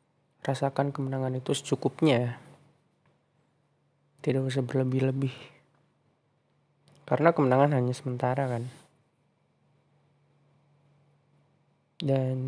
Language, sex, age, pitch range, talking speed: Indonesian, male, 20-39, 130-145 Hz, 65 wpm